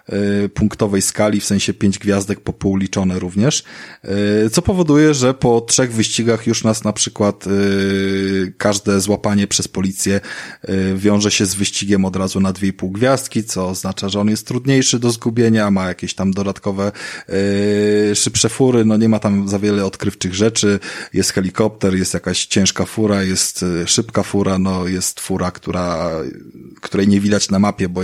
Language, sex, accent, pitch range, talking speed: Polish, male, native, 100-115 Hz, 170 wpm